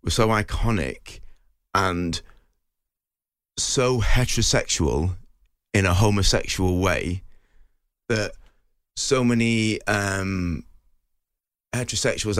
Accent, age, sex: British, 30-49, male